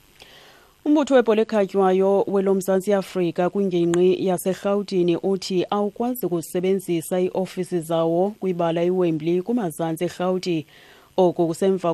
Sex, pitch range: female, 170-190 Hz